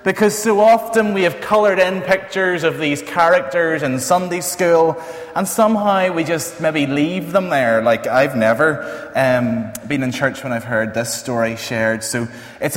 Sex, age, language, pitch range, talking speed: male, 20-39, English, 125-180 Hz, 175 wpm